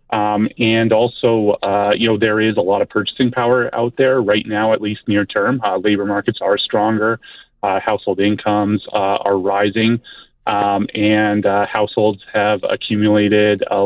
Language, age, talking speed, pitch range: English, 30-49, 160 wpm, 100-110 Hz